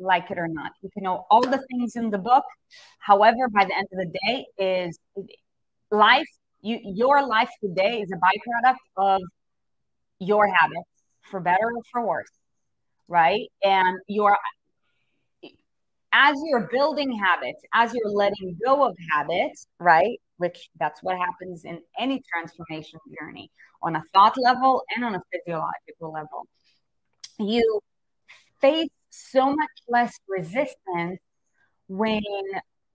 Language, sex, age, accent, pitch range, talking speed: English, female, 30-49, American, 180-250 Hz, 135 wpm